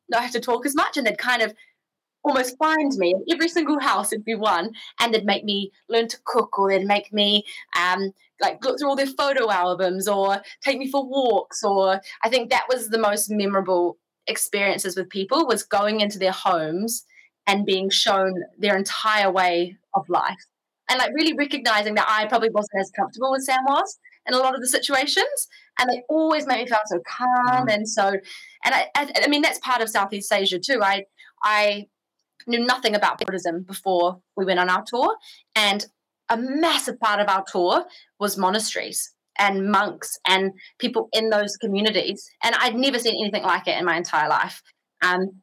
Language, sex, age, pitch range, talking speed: English, female, 20-39, 195-265 Hz, 195 wpm